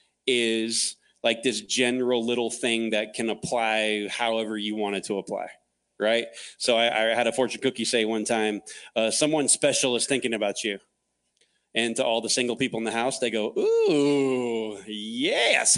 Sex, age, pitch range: male, 30-49, 110-135 Hz